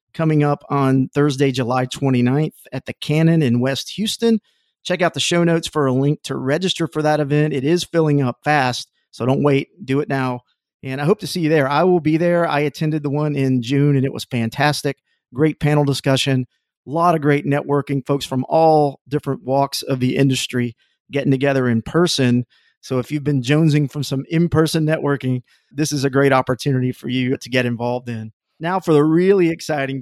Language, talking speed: English, 205 wpm